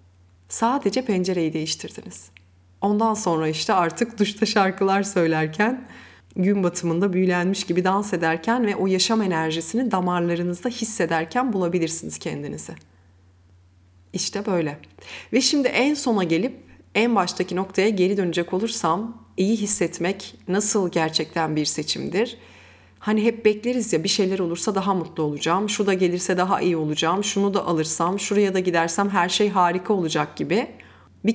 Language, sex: Turkish, female